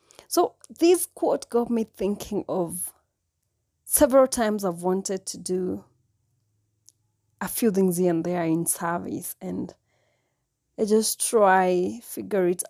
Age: 30-49